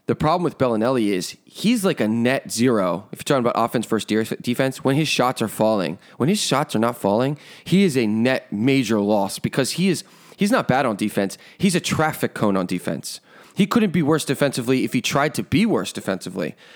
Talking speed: 220 wpm